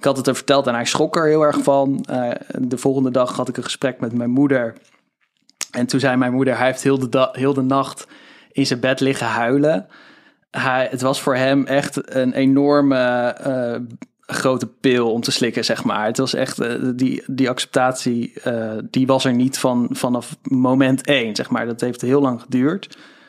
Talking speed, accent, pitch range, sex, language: 205 wpm, Dutch, 125-140 Hz, male, Dutch